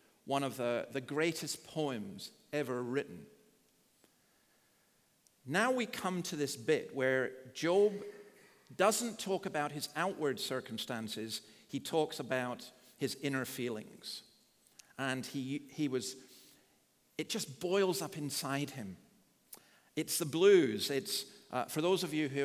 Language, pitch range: English, 130-160 Hz